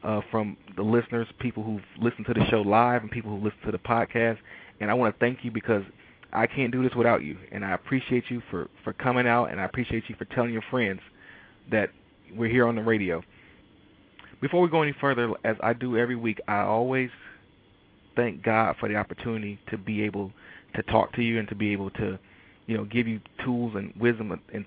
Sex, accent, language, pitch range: male, American, English, 100-120 Hz